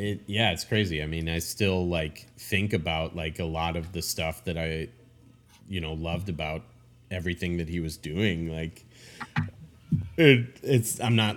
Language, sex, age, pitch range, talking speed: English, male, 30-49, 90-120 Hz, 165 wpm